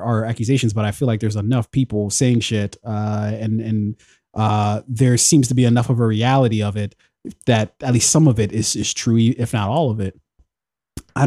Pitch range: 110-135 Hz